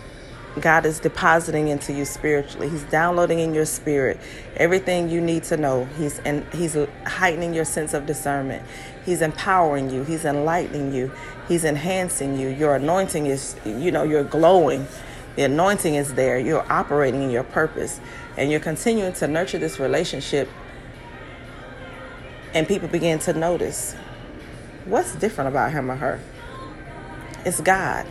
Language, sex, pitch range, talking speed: English, female, 145-175 Hz, 145 wpm